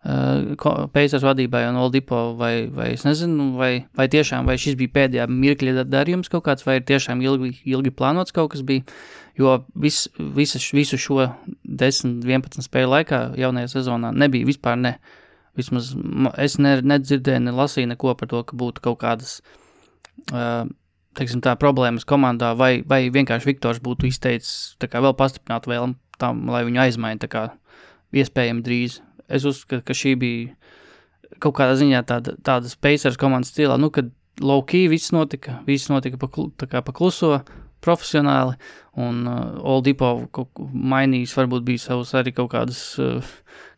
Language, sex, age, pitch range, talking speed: English, male, 20-39, 125-140 Hz, 155 wpm